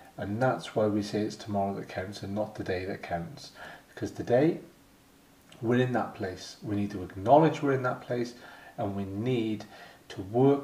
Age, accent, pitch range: 40-59, British, 105-130 Hz